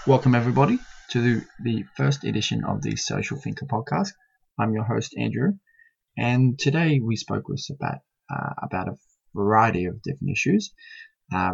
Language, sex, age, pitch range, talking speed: English, male, 20-39, 100-140 Hz, 150 wpm